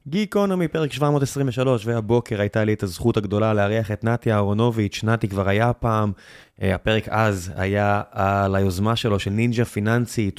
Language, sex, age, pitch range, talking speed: Hebrew, male, 20-39, 105-120 Hz, 150 wpm